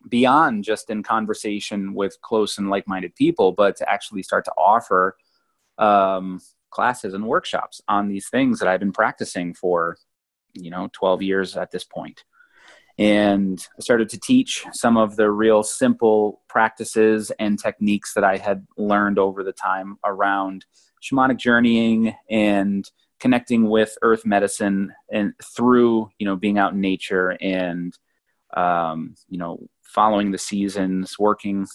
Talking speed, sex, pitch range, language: 150 wpm, male, 95-115 Hz, English